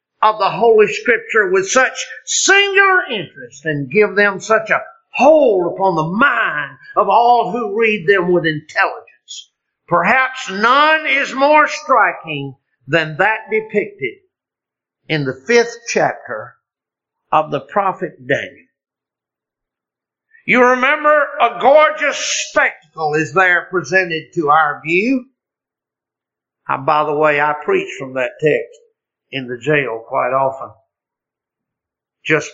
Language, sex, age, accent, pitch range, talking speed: English, male, 50-69, American, 185-290 Hz, 120 wpm